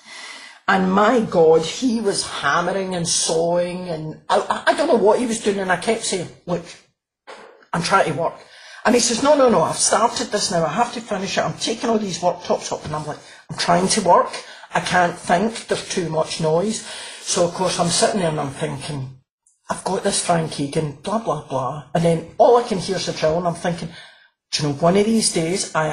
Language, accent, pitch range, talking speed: English, British, 165-220 Hz, 225 wpm